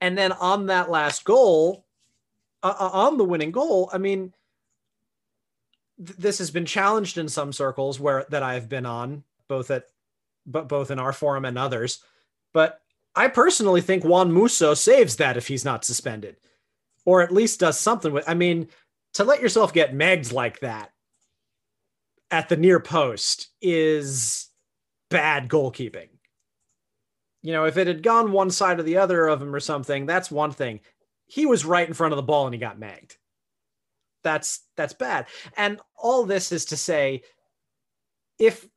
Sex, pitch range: male, 150-215 Hz